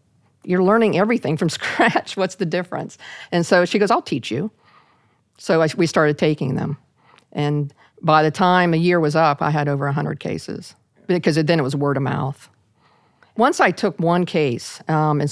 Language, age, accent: English, 50-69, American